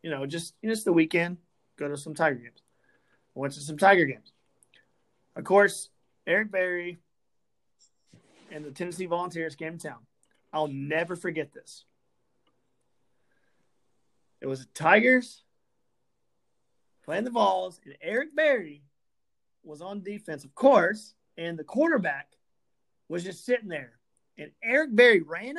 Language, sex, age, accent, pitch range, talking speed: English, male, 30-49, American, 150-205 Hz, 130 wpm